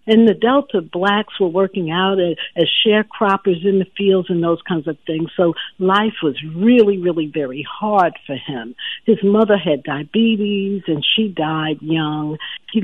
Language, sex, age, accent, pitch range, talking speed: English, female, 60-79, American, 155-215 Hz, 165 wpm